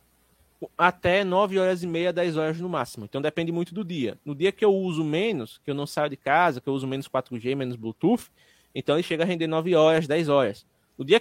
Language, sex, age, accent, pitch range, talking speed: Portuguese, male, 20-39, Brazilian, 145-195 Hz, 235 wpm